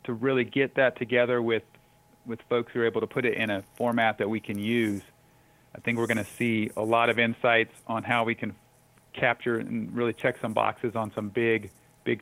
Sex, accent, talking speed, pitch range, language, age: male, American, 220 wpm, 110-125 Hz, English, 40-59